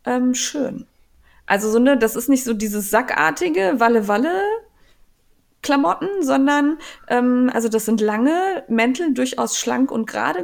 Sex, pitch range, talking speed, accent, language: female, 230-280 Hz, 130 wpm, German, German